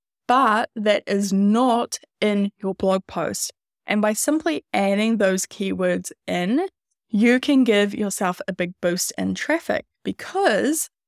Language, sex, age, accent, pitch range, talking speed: English, female, 10-29, Australian, 185-225 Hz, 135 wpm